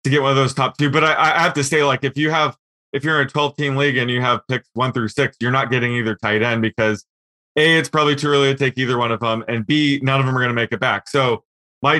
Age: 20-39